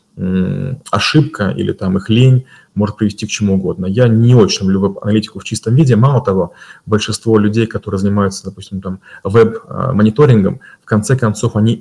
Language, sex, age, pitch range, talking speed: Russian, male, 20-39, 100-115 Hz, 160 wpm